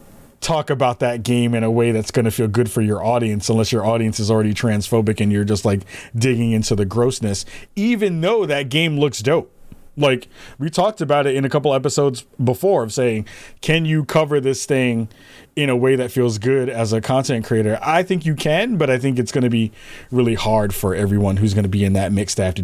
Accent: American